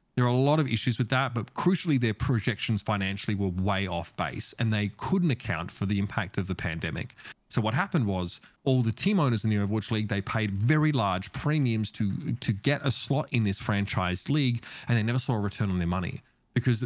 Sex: male